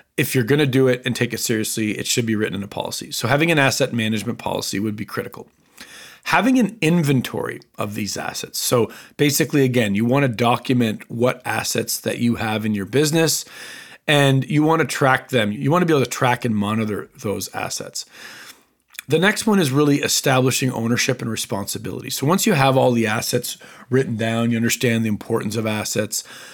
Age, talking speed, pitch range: 40-59, 200 wpm, 110-140 Hz